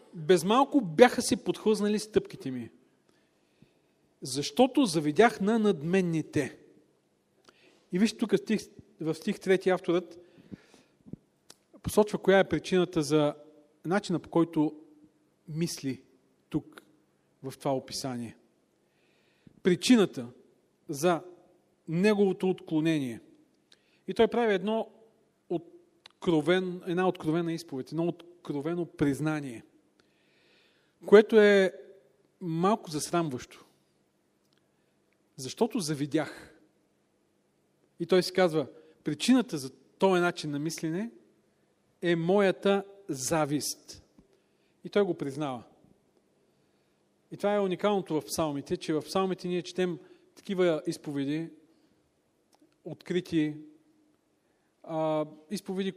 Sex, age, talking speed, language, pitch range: male, 40-59, 90 wpm, Bulgarian, 155-200 Hz